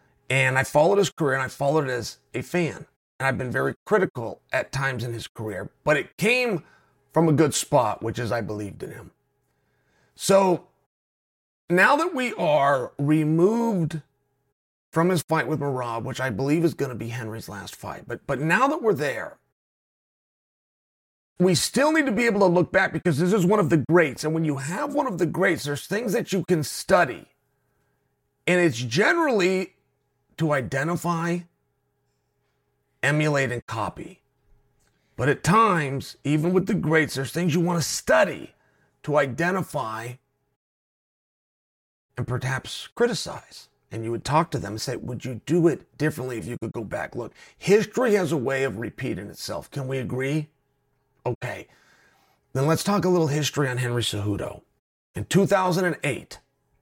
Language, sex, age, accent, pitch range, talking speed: English, male, 30-49, American, 130-175 Hz, 170 wpm